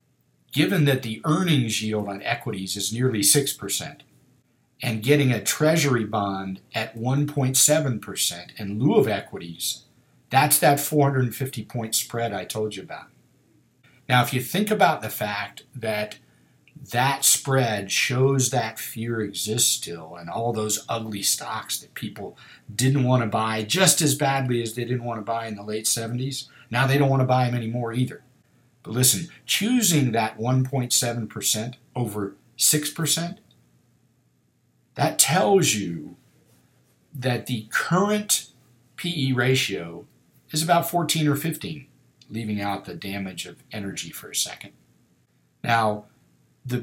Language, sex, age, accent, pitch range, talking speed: English, male, 50-69, American, 110-140 Hz, 135 wpm